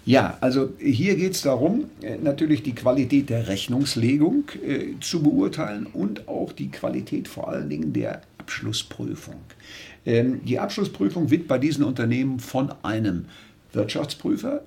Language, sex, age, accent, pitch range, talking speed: German, male, 50-69, German, 115-180 Hz, 125 wpm